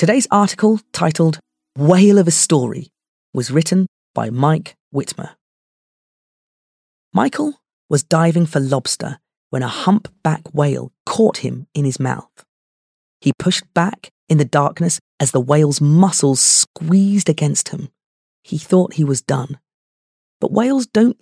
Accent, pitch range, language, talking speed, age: British, 140-190 Hz, English, 135 wpm, 30-49